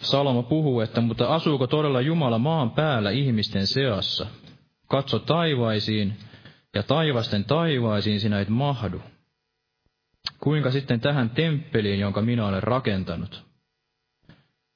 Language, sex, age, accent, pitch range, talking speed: Finnish, male, 20-39, native, 110-140 Hz, 110 wpm